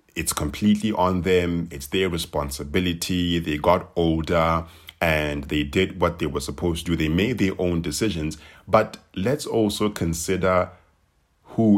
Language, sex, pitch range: English, male, 80-100 Hz